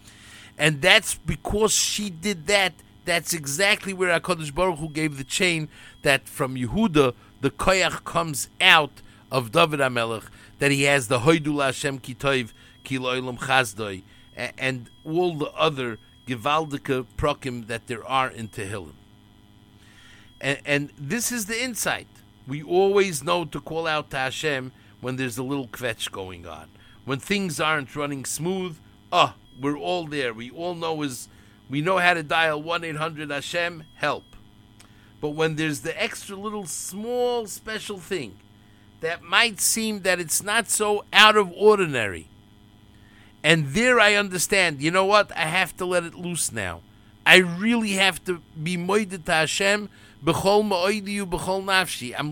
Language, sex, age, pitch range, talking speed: English, male, 50-69, 120-185 Hz, 145 wpm